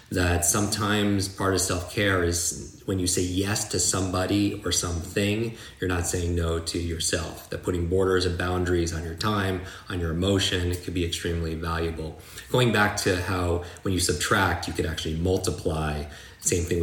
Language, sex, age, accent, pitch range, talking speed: English, male, 30-49, American, 85-95 Hz, 175 wpm